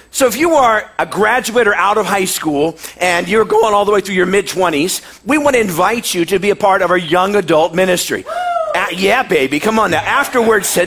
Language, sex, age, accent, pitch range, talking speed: English, male, 40-59, American, 175-225 Hz, 220 wpm